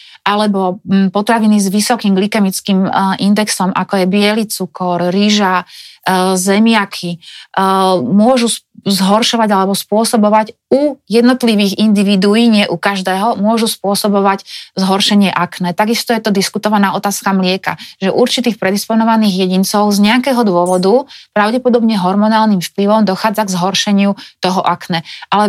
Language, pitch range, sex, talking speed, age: Slovak, 190-215 Hz, female, 115 wpm, 30-49